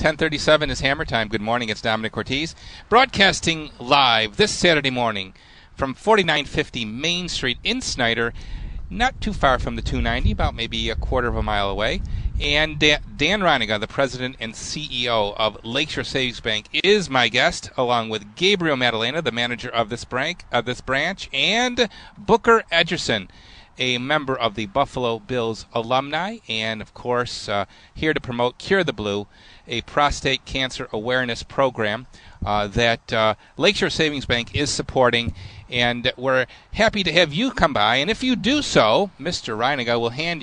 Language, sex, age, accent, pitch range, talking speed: English, male, 40-59, American, 115-155 Hz, 155 wpm